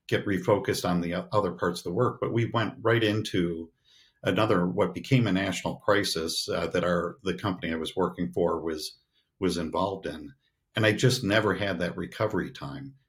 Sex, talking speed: male, 190 wpm